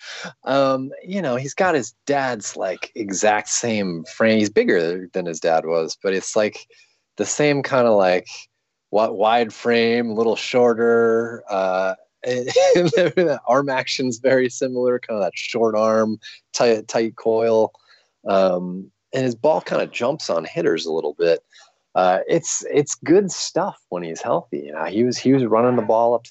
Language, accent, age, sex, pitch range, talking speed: English, American, 30-49, male, 95-140 Hz, 170 wpm